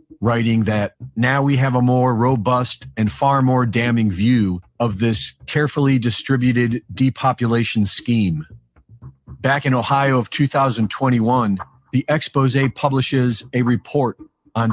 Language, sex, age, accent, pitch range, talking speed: English, male, 40-59, American, 115-135 Hz, 120 wpm